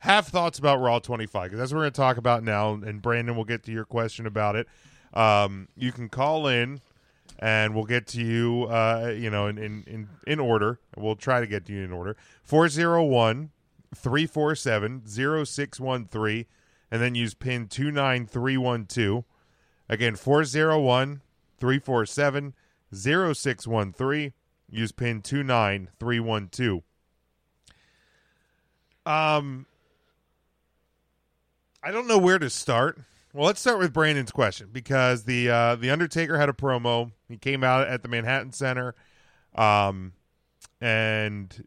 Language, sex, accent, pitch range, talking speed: English, male, American, 110-145 Hz, 130 wpm